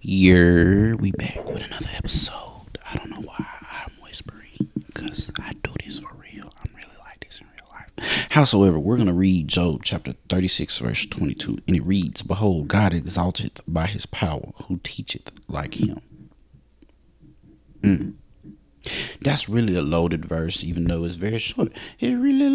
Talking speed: 160 wpm